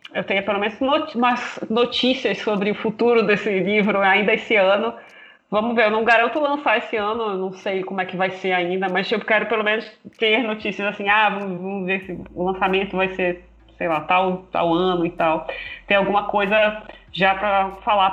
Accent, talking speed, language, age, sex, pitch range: Brazilian, 200 wpm, Portuguese, 20-39, female, 185-220 Hz